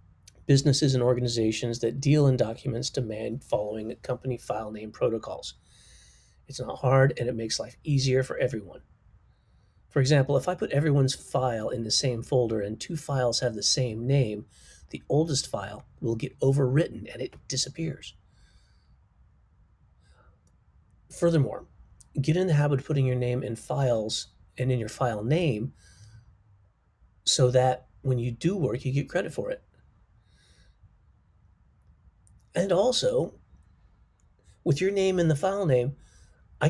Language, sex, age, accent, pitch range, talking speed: English, male, 30-49, American, 110-145 Hz, 145 wpm